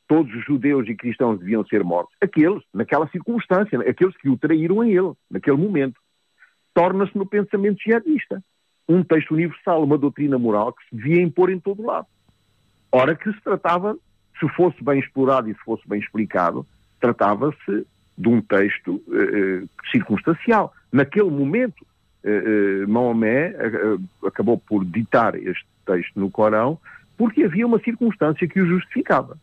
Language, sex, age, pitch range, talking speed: Portuguese, male, 50-69, 110-175 Hz, 150 wpm